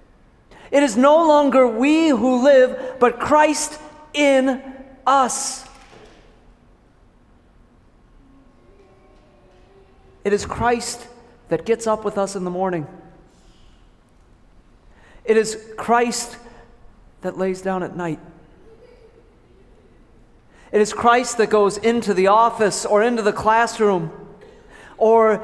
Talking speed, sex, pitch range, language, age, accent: 100 wpm, male, 210-260 Hz, English, 40-59, American